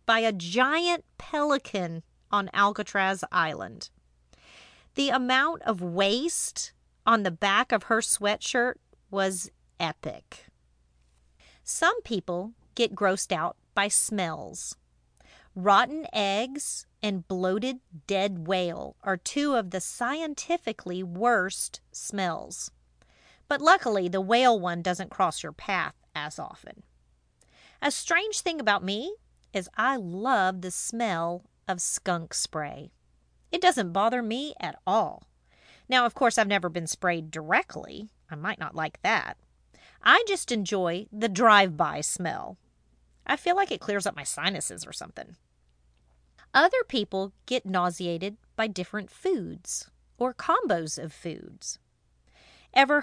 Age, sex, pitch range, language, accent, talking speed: 40-59, female, 170-240 Hz, English, American, 125 wpm